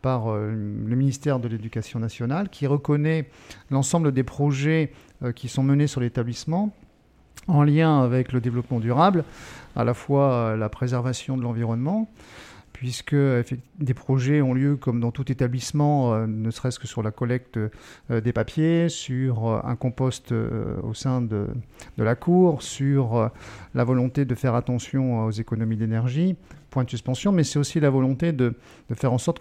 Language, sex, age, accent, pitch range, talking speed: French, male, 50-69, French, 120-145 Hz, 155 wpm